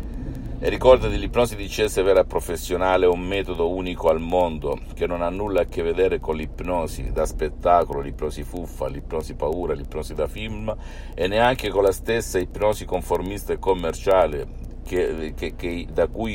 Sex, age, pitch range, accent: male, 60-79, 70-95 Hz, native